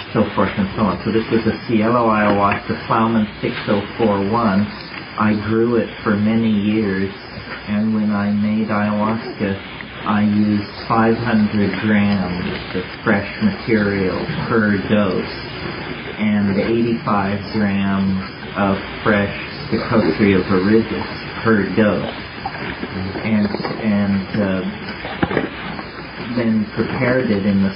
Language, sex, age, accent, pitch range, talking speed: English, male, 40-59, American, 100-110 Hz, 110 wpm